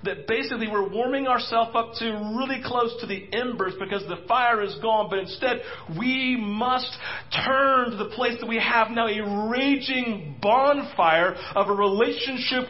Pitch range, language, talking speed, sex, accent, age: 225-260 Hz, English, 165 wpm, male, American, 40-59